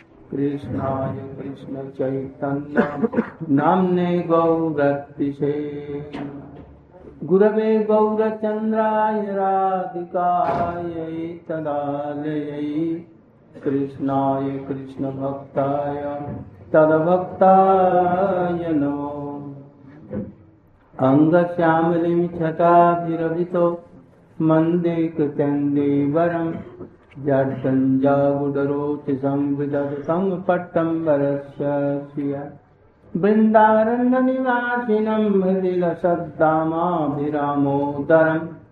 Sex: male